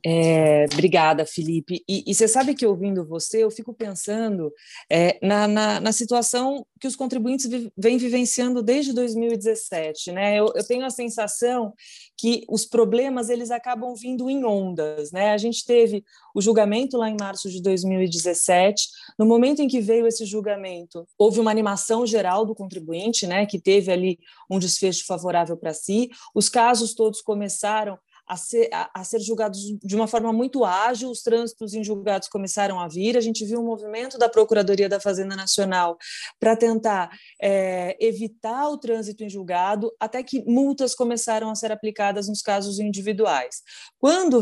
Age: 30-49